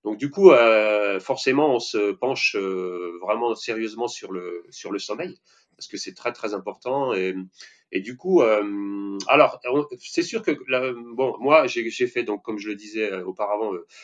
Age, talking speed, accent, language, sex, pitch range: 30-49, 185 wpm, French, French, male, 100-145 Hz